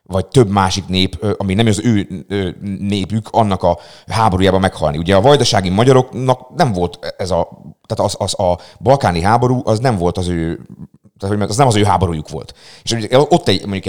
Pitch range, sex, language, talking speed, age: 90-125 Hz, male, Hungarian, 185 wpm, 30-49